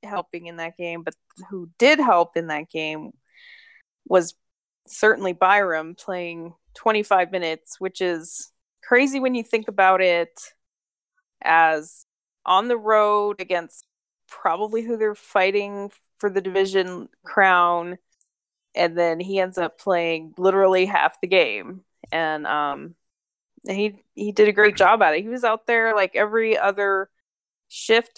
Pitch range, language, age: 170-210 Hz, English, 20-39